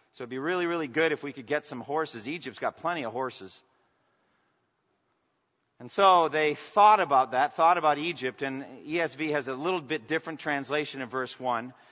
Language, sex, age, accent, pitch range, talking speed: English, male, 50-69, American, 150-195 Hz, 190 wpm